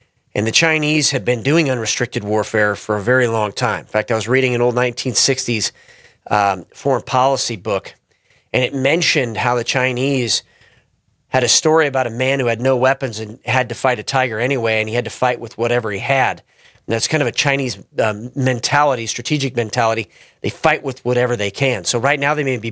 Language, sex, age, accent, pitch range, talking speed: English, male, 40-59, American, 115-135 Hz, 210 wpm